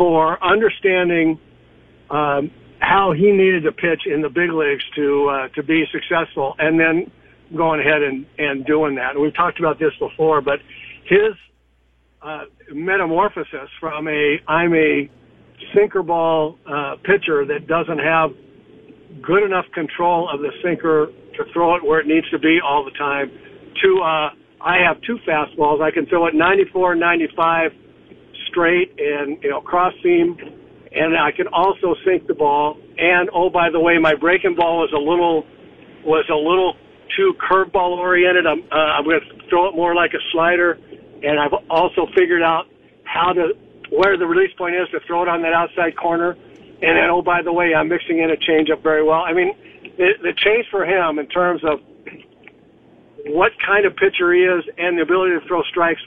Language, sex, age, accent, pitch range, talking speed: English, male, 60-79, American, 155-180 Hz, 180 wpm